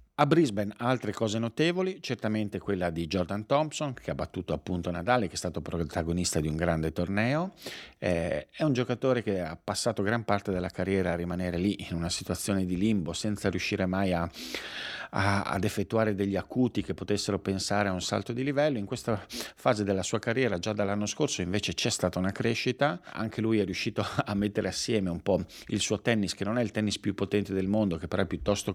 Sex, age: male, 50-69